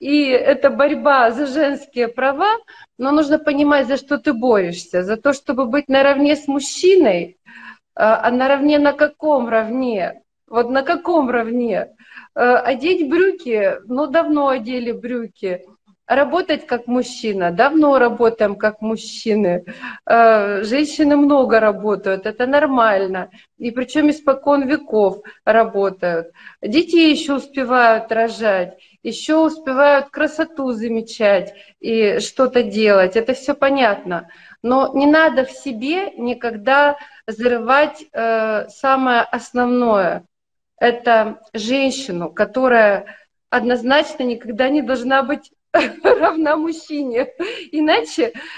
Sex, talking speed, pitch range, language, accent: female, 110 wpm, 225-295 Hz, Russian, native